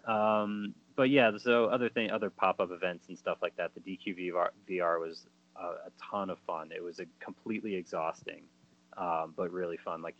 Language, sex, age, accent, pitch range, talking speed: English, male, 30-49, American, 80-95 Hz, 190 wpm